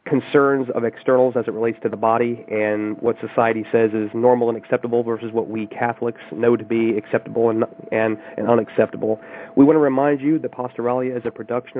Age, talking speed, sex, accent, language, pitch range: 40-59, 200 wpm, male, American, English, 110-135 Hz